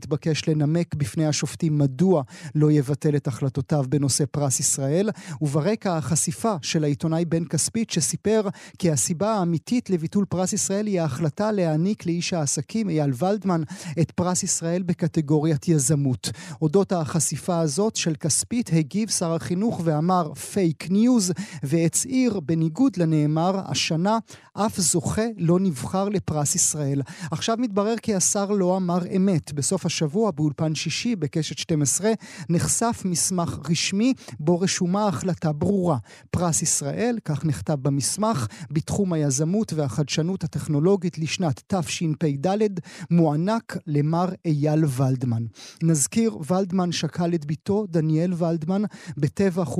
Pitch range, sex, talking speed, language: 155-190 Hz, male, 120 wpm, Hebrew